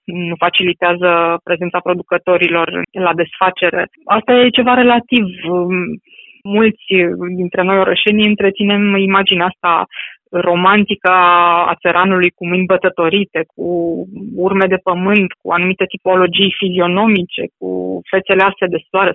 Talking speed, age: 110 wpm, 20-39